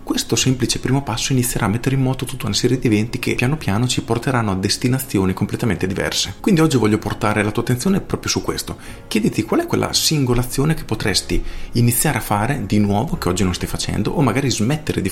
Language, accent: Italian, native